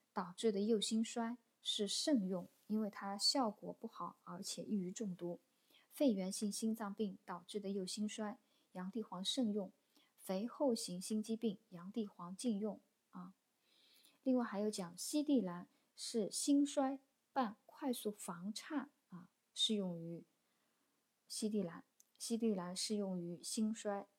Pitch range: 195-240 Hz